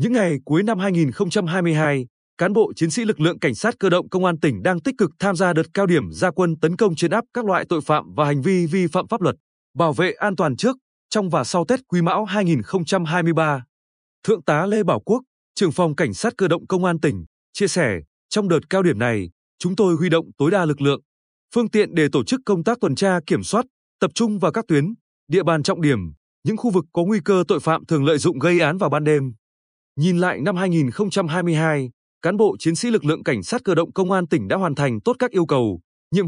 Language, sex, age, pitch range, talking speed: Vietnamese, male, 20-39, 150-200 Hz, 240 wpm